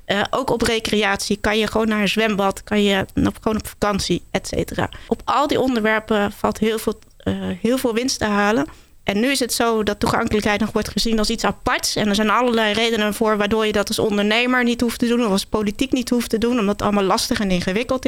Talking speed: 240 wpm